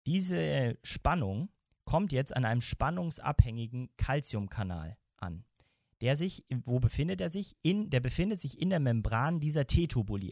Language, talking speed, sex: German, 145 wpm, male